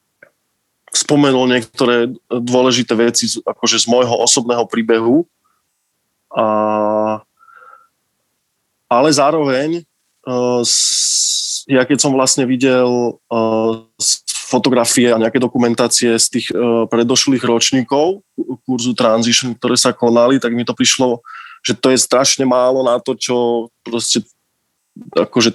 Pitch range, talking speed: 115-130 Hz, 105 wpm